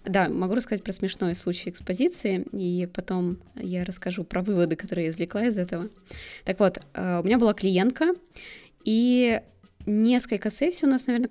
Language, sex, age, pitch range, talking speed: Russian, female, 20-39, 180-230 Hz, 160 wpm